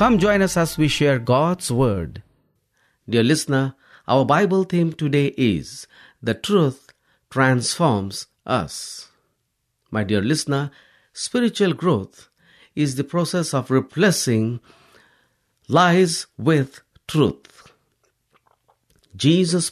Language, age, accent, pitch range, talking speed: English, 50-69, Indian, 120-165 Hz, 100 wpm